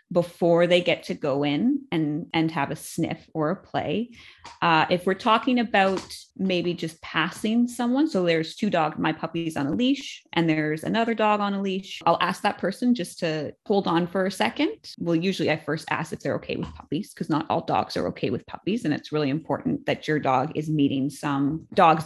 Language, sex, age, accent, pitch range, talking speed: English, female, 20-39, American, 155-205 Hz, 215 wpm